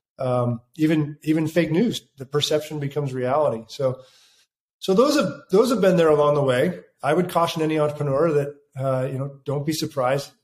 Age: 40-59